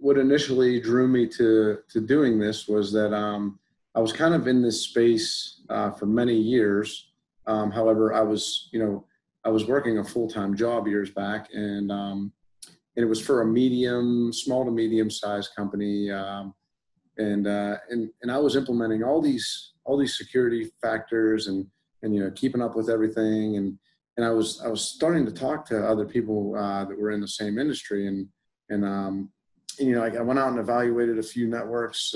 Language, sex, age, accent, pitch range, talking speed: English, male, 30-49, American, 105-120 Hz, 190 wpm